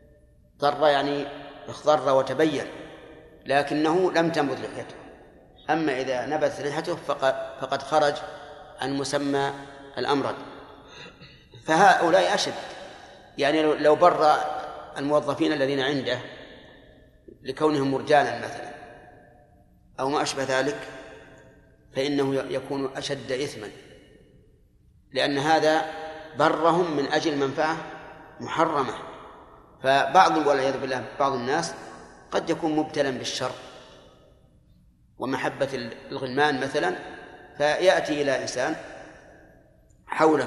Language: Arabic